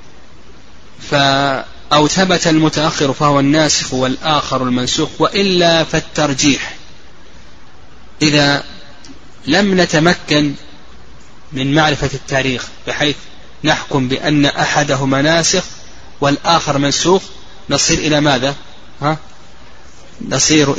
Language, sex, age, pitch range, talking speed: Arabic, male, 30-49, 130-155 Hz, 75 wpm